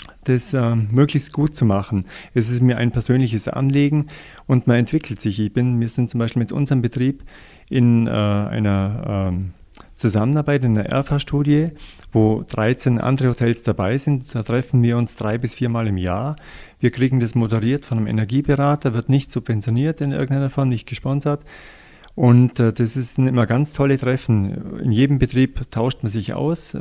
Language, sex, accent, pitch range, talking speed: German, male, German, 110-135 Hz, 175 wpm